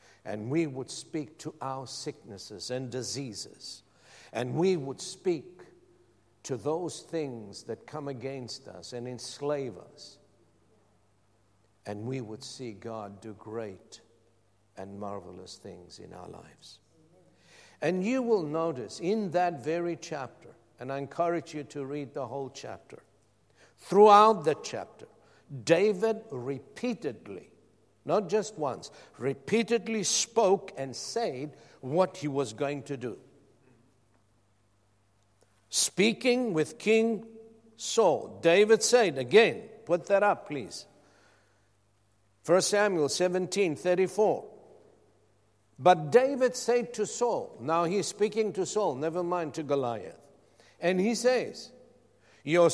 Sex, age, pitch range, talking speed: male, 60-79, 115-190 Hz, 120 wpm